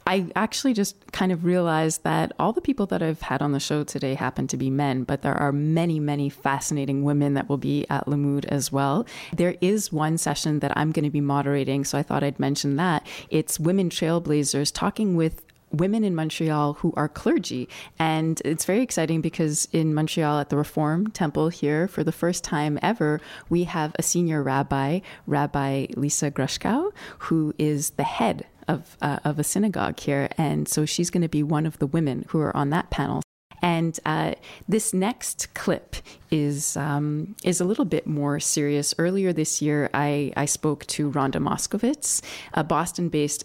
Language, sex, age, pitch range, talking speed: English, female, 20-39, 145-170 Hz, 185 wpm